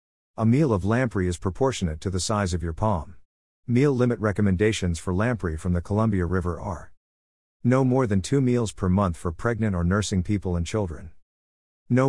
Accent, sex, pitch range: American, male, 90-110 Hz